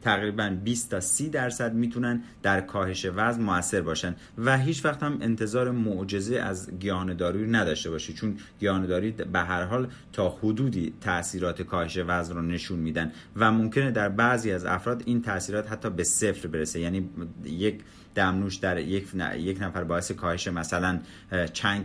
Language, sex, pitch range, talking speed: Persian, male, 90-115 Hz, 165 wpm